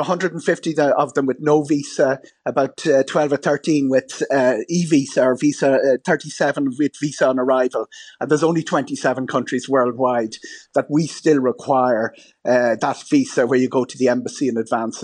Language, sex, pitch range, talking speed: English, male, 130-160 Hz, 170 wpm